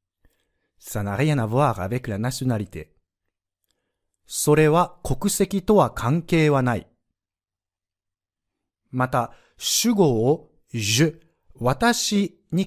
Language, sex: Japanese, male